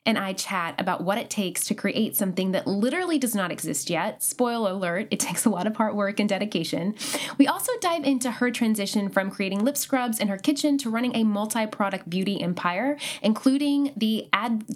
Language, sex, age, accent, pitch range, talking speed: English, female, 10-29, American, 200-270 Hz, 200 wpm